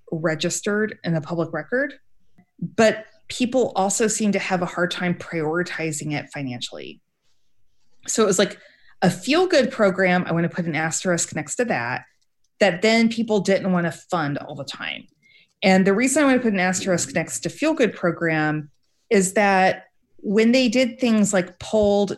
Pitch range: 170-220 Hz